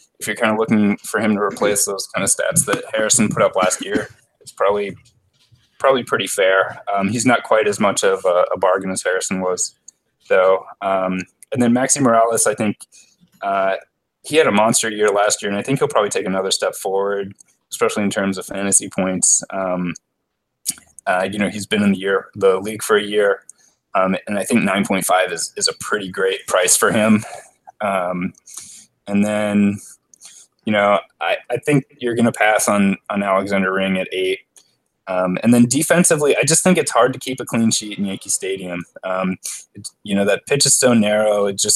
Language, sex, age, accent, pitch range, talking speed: English, male, 20-39, American, 95-120 Hz, 205 wpm